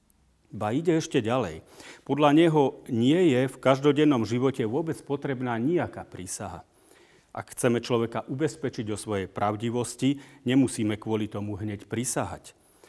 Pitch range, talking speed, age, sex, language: 105-130 Hz, 125 wpm, 40-59, male, Slovak